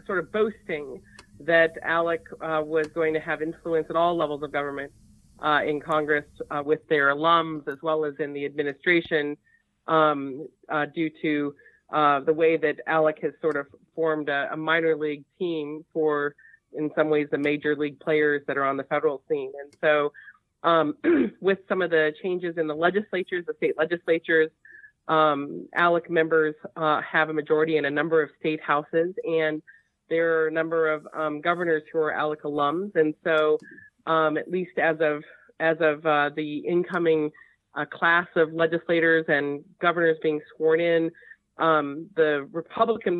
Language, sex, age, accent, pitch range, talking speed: English, female, 30-49, American, 150-165 Hz, 170 wpm